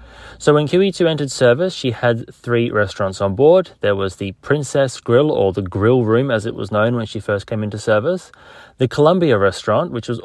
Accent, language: Australian, English